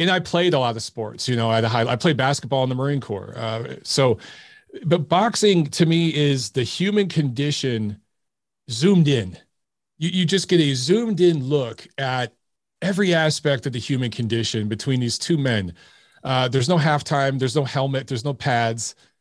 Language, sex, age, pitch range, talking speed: English, male, 40-59, 125-165 Hz, 185 wpm